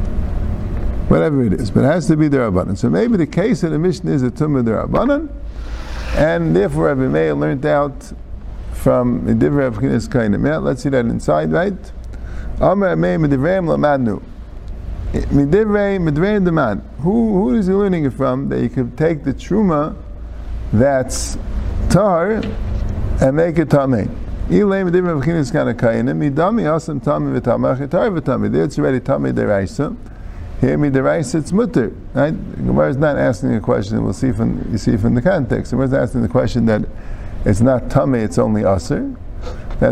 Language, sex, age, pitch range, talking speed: English, male, 50-69, 110-170 Hz, 110 wpm